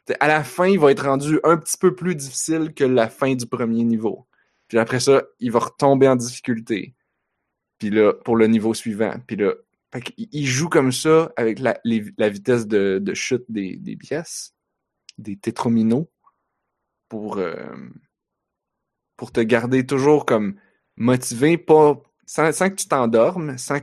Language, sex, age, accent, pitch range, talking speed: French, male, 20-39, Canadian, 110-140 Hz, 165 wpm